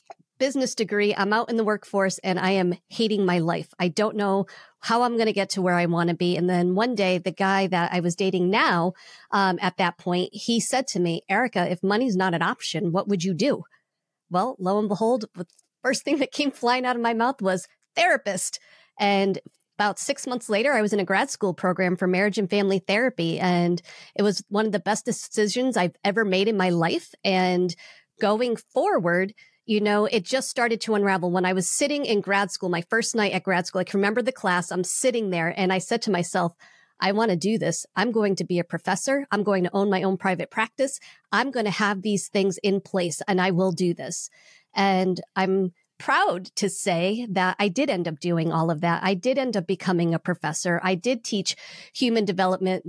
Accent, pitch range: American, 180-220 Hz